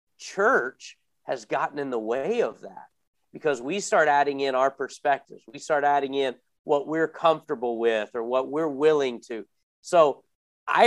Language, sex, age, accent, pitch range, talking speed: English, male, 40-59, American, 135-205 Hz, 165 wpm